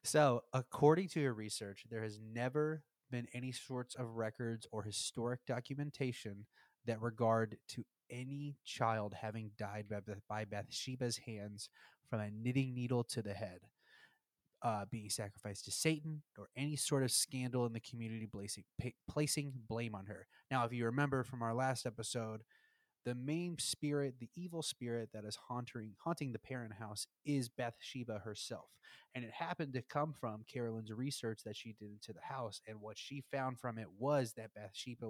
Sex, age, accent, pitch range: male, 20-39, American, 110-135 Hz